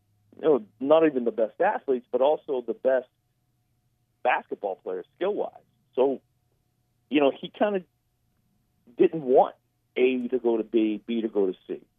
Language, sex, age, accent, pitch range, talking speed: English, male, 50-69, American, 110-135 Hz, 150 wpm